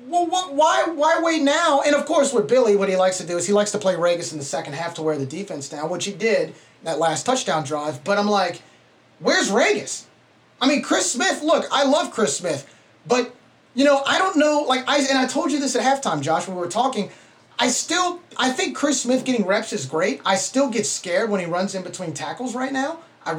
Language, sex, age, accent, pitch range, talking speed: English, male, 30-49, American, 170-260 Hz, 245 wpm